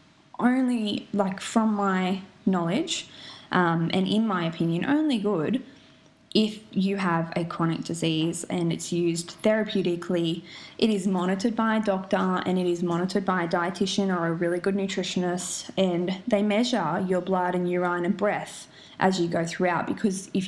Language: English